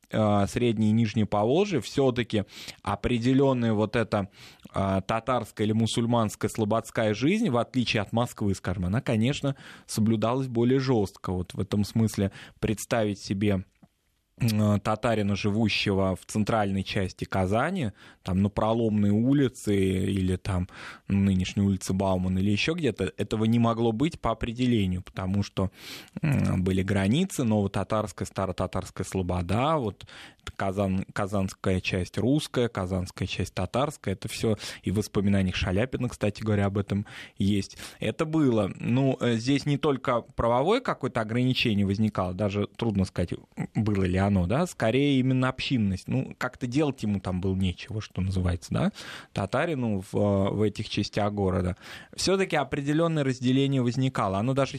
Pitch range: 100-120 Hz